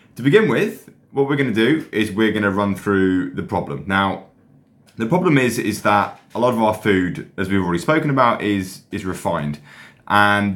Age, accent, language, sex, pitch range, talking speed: 20-39, British, English, male, 95-110 Hz, 205 wpm